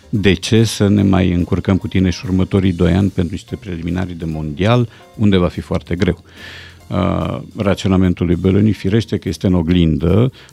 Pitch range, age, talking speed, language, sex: 85-110 Hz, 50-69, 175 wpm, Romanian, male